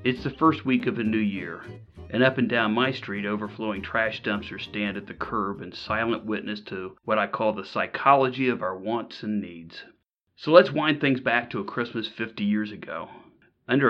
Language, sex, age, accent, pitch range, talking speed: English, male, 40-59, American, 105-125 Hz, 205 wpm